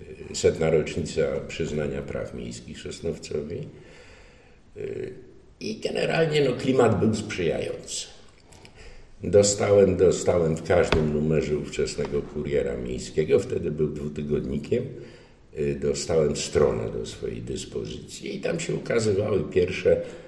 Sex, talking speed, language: male, 100 wpm, Polish